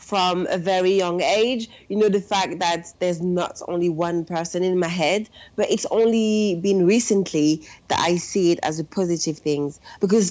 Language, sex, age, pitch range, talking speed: English, female, 30-49, 175-220 Hz, 185 wpm